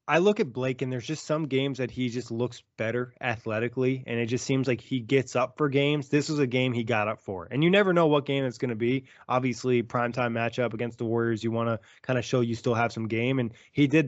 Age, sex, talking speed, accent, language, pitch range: 20-39, male, 270 wpm, American, English, 120-140 Hz